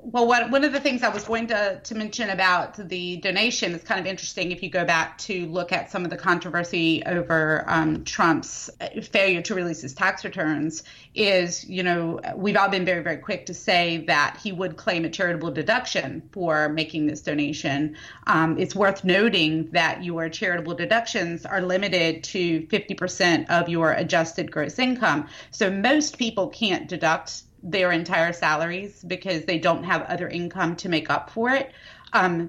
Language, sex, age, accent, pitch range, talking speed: English, female, 30-49, American, 160-195 Hz, 180 wpm